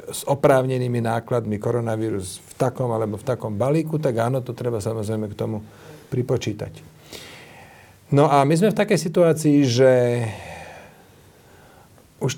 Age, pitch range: 40-59, 120-140 Hz